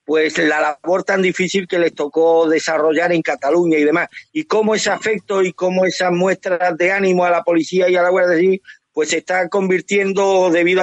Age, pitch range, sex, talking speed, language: 50-69, 165-200 Hz, male, 200 wpm, Spanish